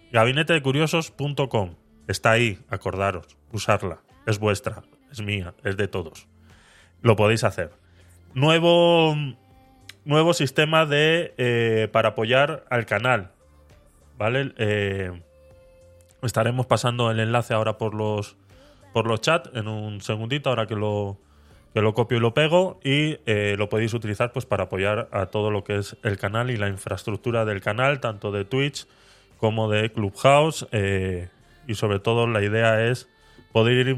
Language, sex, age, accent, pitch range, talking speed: Spanish, male, 20-39, Spanish, 100-130 Hz, 145 wpm